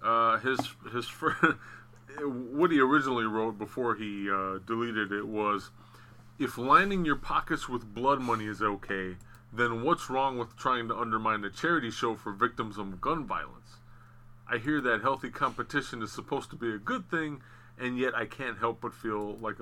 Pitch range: 110-125 Hz